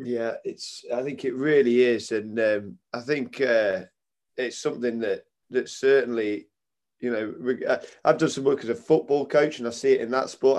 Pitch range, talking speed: 130-195 Hz, 195 wpm